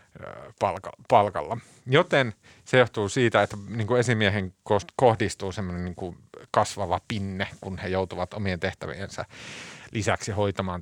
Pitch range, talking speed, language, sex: 95-125 Hz, 110 wpm, Finnish, male